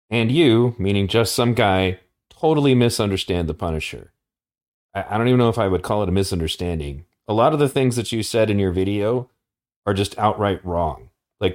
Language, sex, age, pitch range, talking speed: English, male, 30-49, 95-120 Hz, 195 wpm